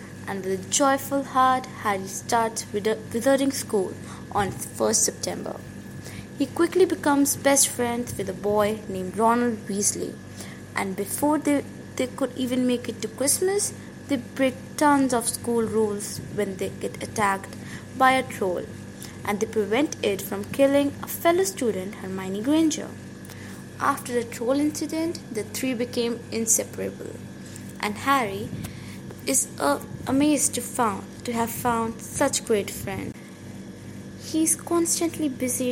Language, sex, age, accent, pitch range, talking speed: English, female, 20-39, Indian, 210-275 Hz, 140 wpm